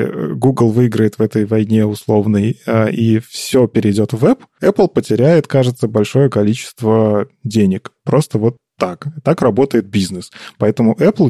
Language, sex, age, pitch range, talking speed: Russian, male, 20-39, 110-140 Hz, 135 wpm